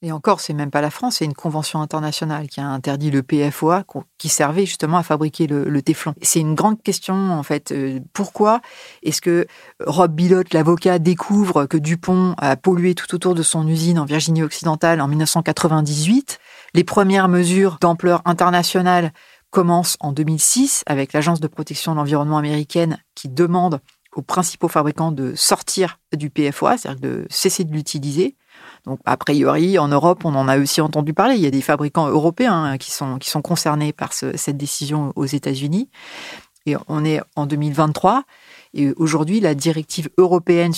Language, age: French, 40-59